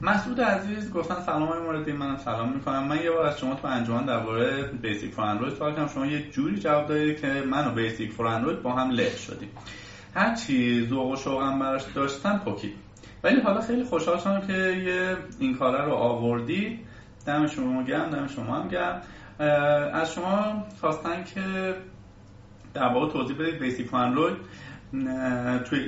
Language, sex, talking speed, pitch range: Persian, male, 165 wpm, 115-155 Hz